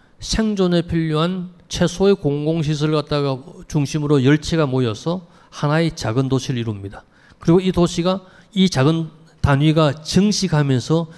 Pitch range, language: 140-180 Hz, Korean